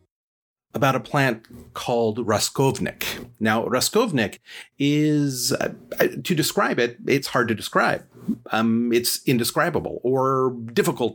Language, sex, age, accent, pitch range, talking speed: English, male, 40-59, American, 110-145 Hz, 115 wpm